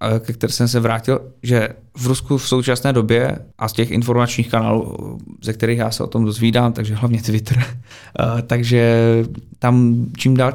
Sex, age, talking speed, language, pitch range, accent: male, 20-39, 165 wpm, Czech, 110-125 Hz, native